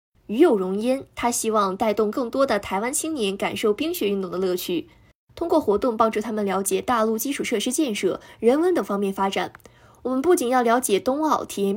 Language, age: Chinese, 20-39